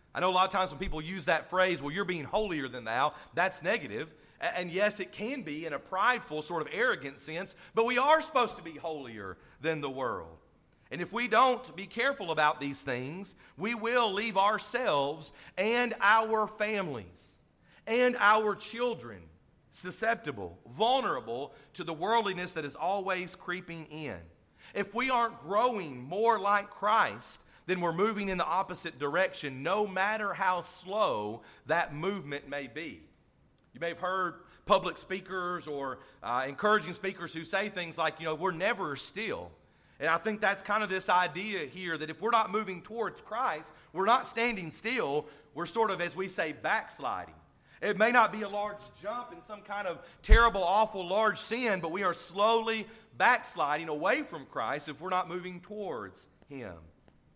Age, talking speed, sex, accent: 40-59, 175 wpm, male, American